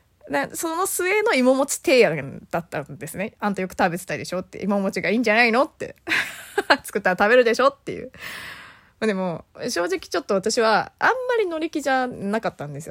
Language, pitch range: Japanese, 180-260 Hz